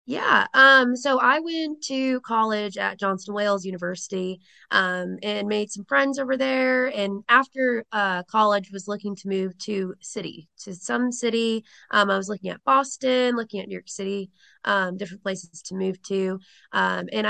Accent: American